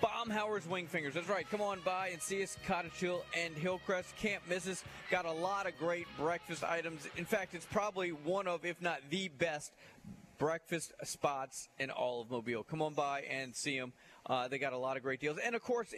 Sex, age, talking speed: male, 30-49, 215 wpm